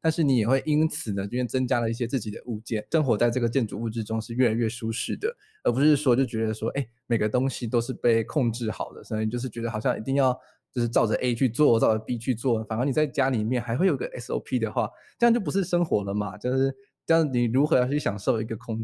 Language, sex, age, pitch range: Chinese, male, 20-39, 115-140 Hz